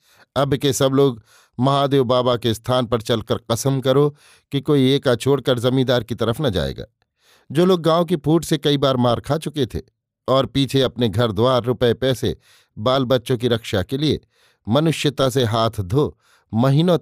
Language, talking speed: Hindi, 180 wpm